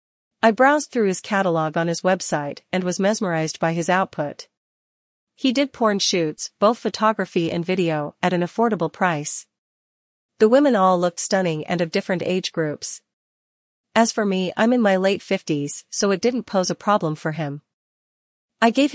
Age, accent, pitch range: 40-59, American, 170-205 Hz